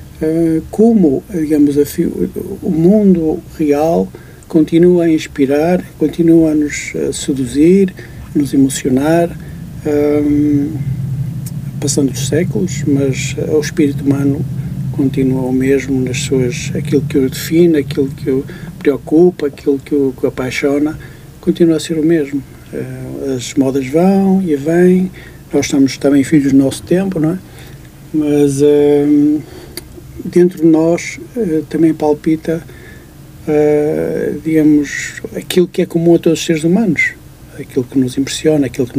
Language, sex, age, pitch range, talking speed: Portuguese, male, 60-79, 135-160 Hz, 125 wpm